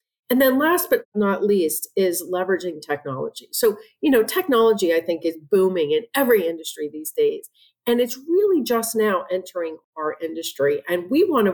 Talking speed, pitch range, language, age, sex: 175 wpm, 170-250 Hz, English, 40-59, female